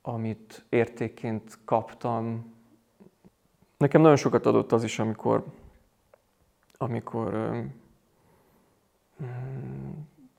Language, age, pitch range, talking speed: Hungarian, 30-49, 110-130 Hz, 70 wpm